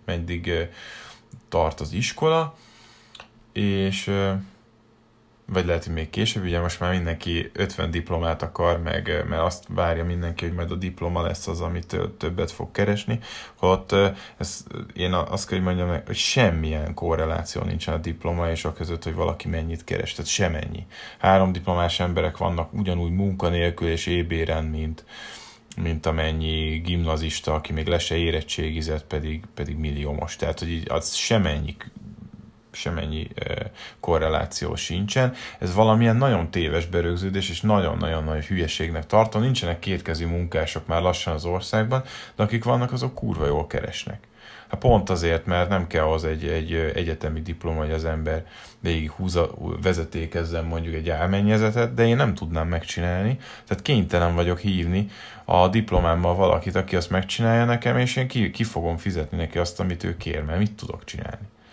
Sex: male